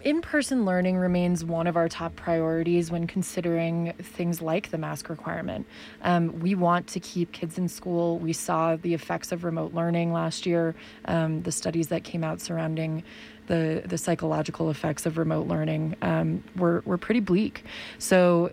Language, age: English, 20-39